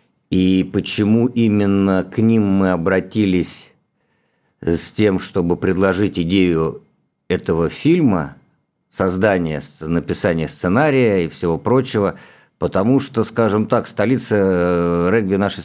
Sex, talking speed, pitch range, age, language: male, 105 wpm, 85-105 Hz, 50-69, Russian